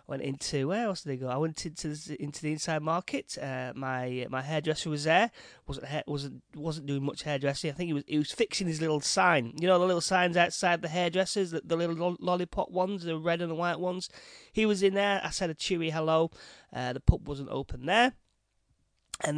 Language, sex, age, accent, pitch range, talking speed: English, male, 30-49, British, 140-180 Hz, 230 wpm